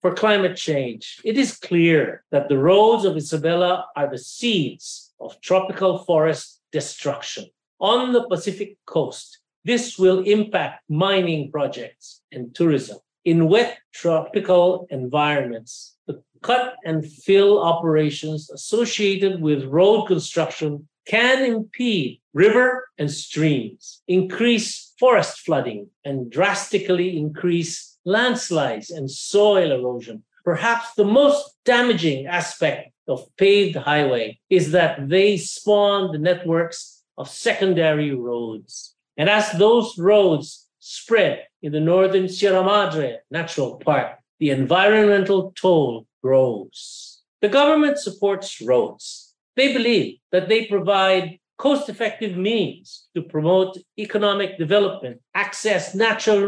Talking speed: 110 wpm